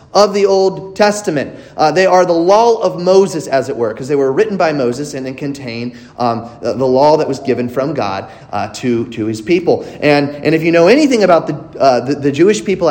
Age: 30-49